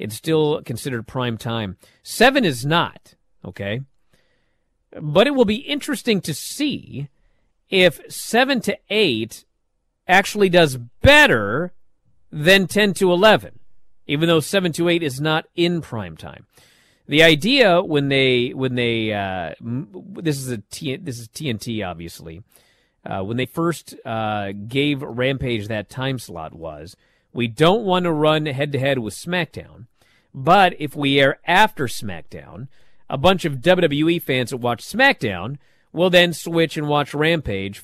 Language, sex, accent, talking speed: English, male, American, 150 wpm